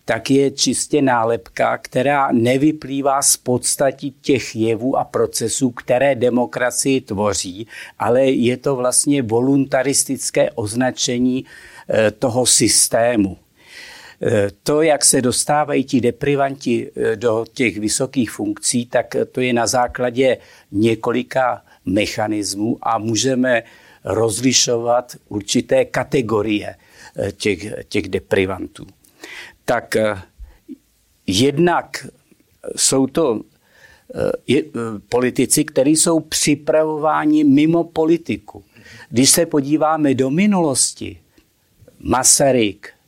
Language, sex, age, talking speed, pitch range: Czech, male, 60-79, 90 wpm, 120-150 Hz